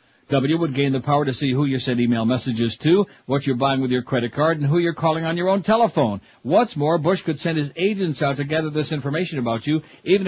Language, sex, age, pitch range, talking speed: English, male, 60-79, 130-160 Hz, 250 wpm